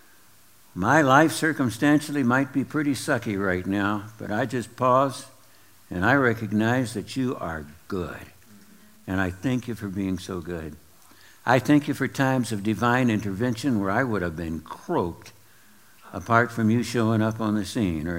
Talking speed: 170 wpm